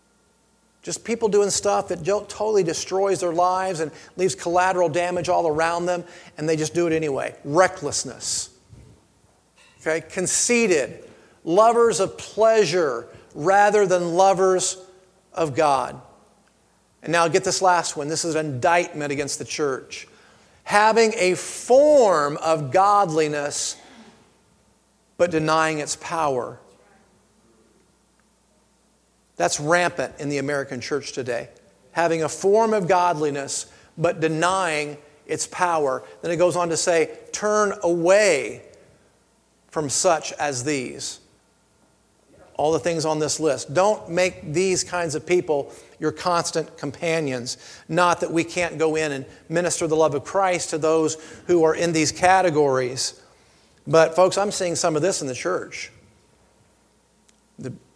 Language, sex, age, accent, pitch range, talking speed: English, male, 40-59, American, 155-185 Hz, 135 wpm